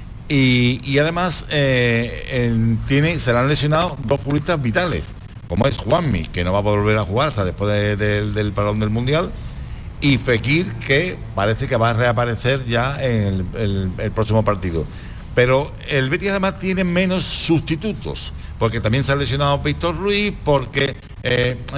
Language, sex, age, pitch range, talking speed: Spanish, male, 60-79, 115-165 Hz, 175 wpm